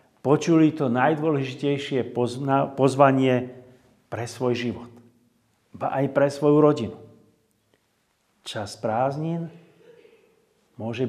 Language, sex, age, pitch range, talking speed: Slovak, male, 50-69, 115-155 Hz, 85 wpm